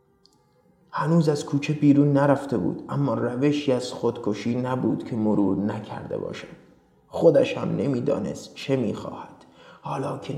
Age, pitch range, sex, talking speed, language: 30-49, 135-170 Hz, male, 125 wpm, Persian